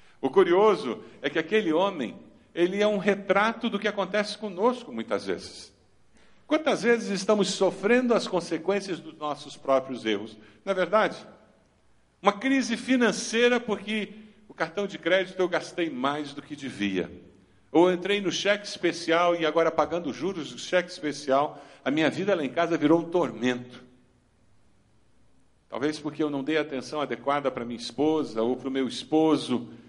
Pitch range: 125-195 Hz